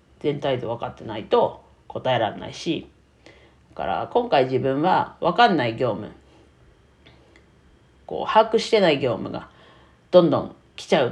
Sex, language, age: female, Japanese, 40-59